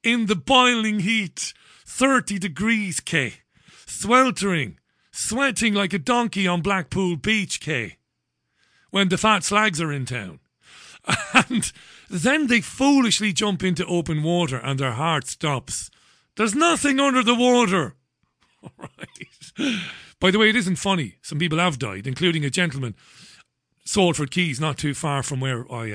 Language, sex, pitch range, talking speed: English, male, 150-215 Hz, 150 wpm